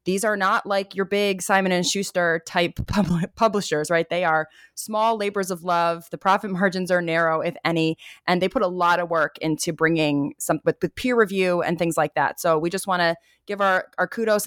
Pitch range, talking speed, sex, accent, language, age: 165-200 Hz, 205 wpm, female, American, English, 20-39